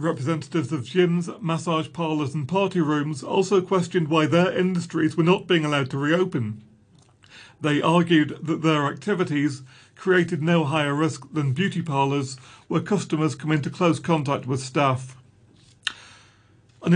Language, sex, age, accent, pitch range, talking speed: English, male, 40-59, British, 140-170 Hz, 140 wpm